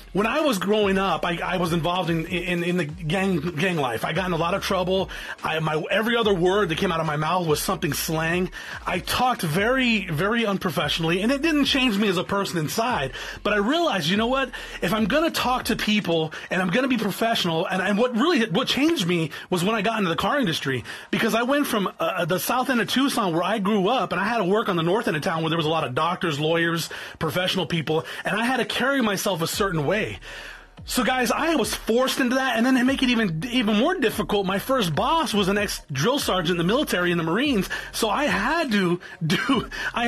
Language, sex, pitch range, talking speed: English, male, 175-235 Hz, 245 wpm